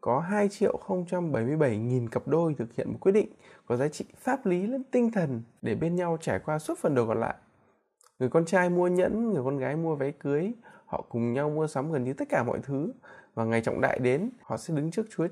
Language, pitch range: Vietnamese, 125-180 Hz